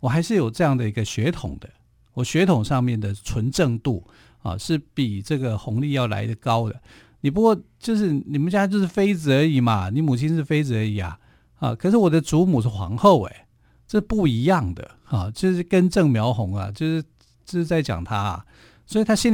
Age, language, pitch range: 50-69, Chinese, 110-155 Hz